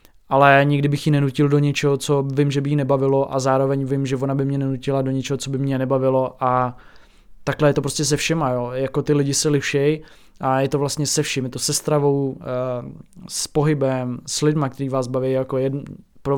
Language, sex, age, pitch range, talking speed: Czech, male, 20-39, 135-150 Hz, 220 wpm